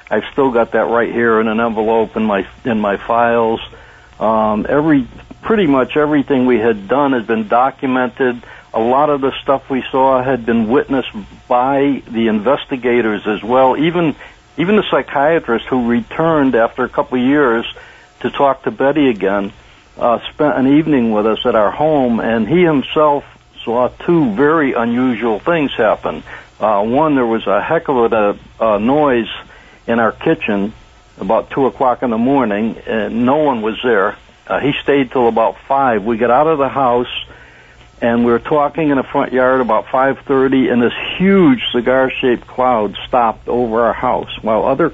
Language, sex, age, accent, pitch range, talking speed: English, male, 60-79, American, 115-145 Hz, 175 wpm